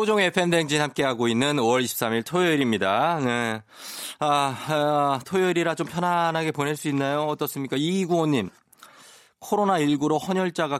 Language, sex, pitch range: Korean, male, 105-150 Hz